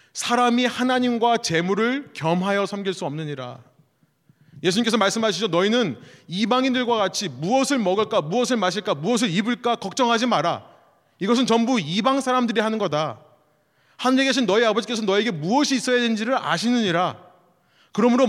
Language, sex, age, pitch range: Korean, male, 30-49, 140-230 Hz